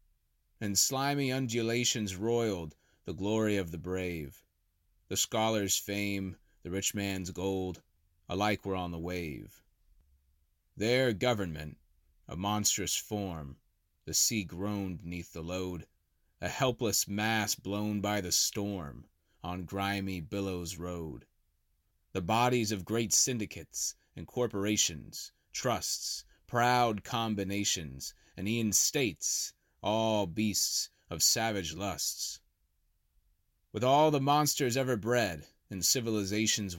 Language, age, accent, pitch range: English, 30-49, American, 85-110 Hz